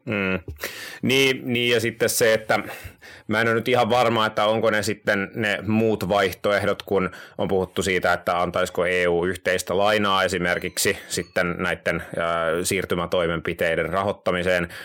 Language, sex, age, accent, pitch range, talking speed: Finnish, male, 30-49, native, 85-110 Hz, 140 wpm